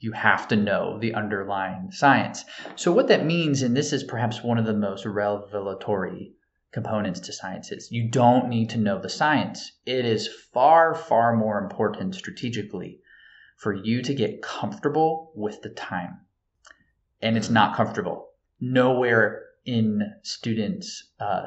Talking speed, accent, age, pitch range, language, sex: 150 wpm, American, 20-39, 105-125 Hz, English, male